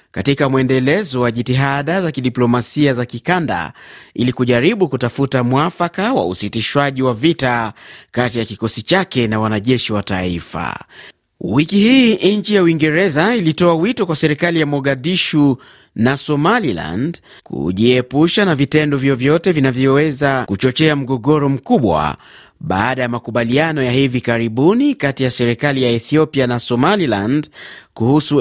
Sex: male